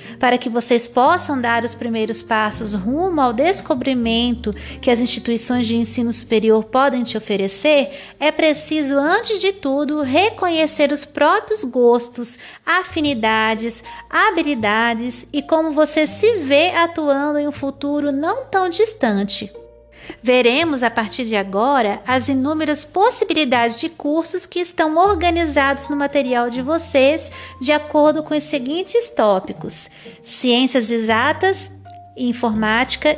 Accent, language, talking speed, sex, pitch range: Brazilian, Portuguese, 125 wpm, female, 225-310 Hz